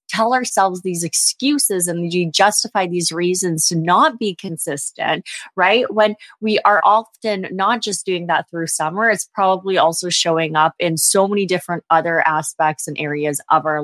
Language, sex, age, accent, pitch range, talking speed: English, female, 20-39, American, 160-195 Hz, 170 wpm